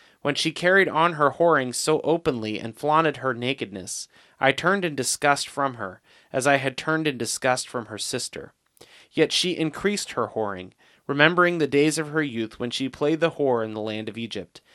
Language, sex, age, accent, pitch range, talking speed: English, male, 30-49, American, 120-155 Hz, 195 wpm